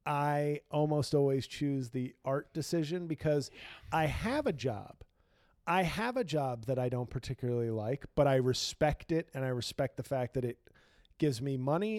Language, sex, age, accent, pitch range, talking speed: English, male, 40-59, American, 120-150 Hz, 175 wpm